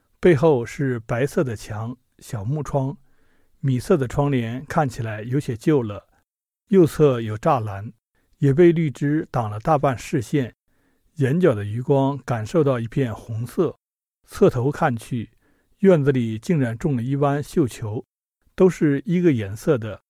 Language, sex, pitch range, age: Chinese, male, 115-155 Hz, 50-69